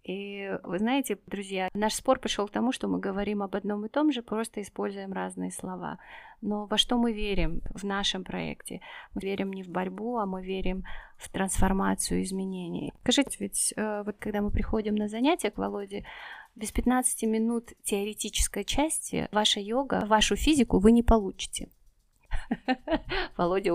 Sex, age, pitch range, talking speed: female, 20-39, 190-230 Hz, 160 wpm